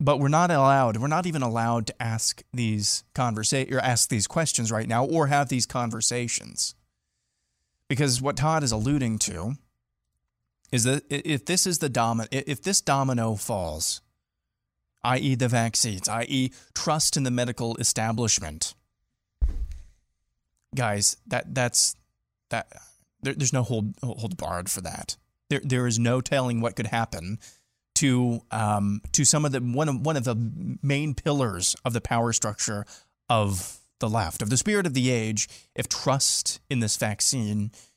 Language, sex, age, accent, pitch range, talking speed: English, male, 30-49, American, 105-135 Hz, 160 wpm